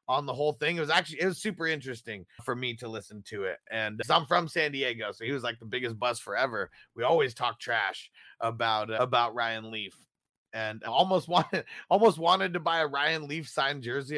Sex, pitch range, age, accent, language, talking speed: male, 120-180 Hz, 30-49, American, English, 225 wpm